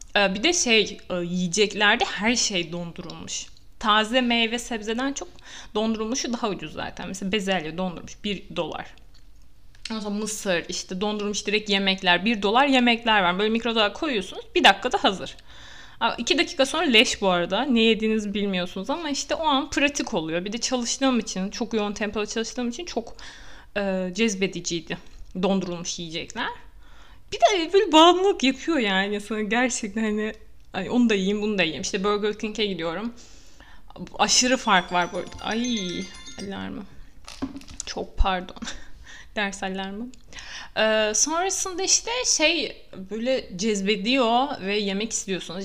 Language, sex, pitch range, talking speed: Turkish, female, 195-250 Hz, 135 wpm